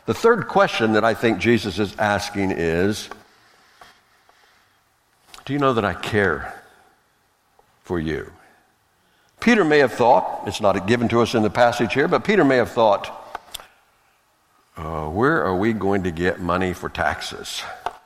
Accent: American